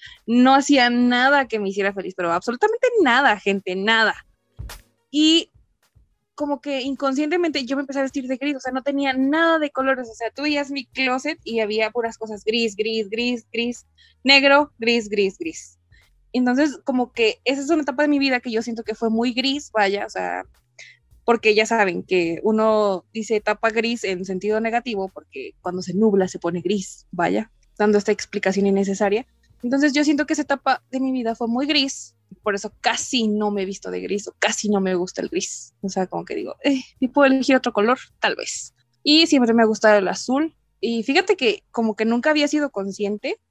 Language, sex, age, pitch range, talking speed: Spanish, female, 20-39, 200-275 Hz, 205 wpm